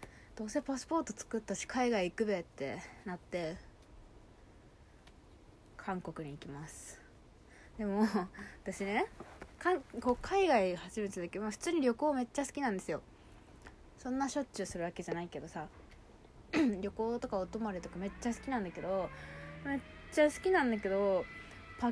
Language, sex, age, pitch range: Japanese, female, 20-39, 185-255 Hz